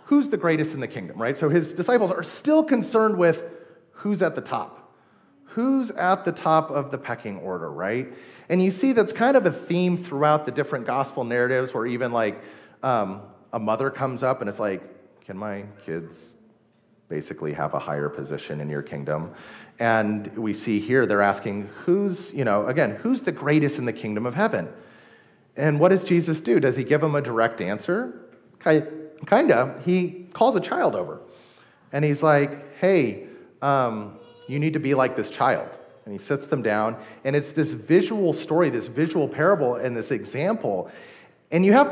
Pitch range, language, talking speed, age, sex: 115-175 Hz, English, 185 wpm, 30-49, male